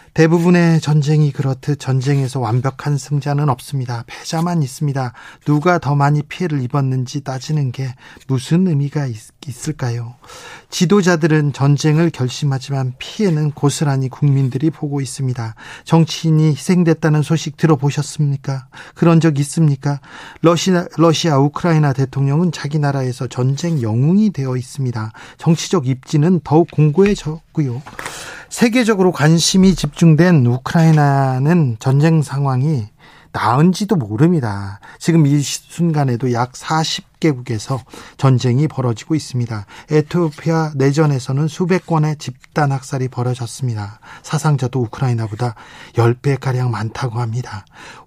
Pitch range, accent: 130-160 Hz, native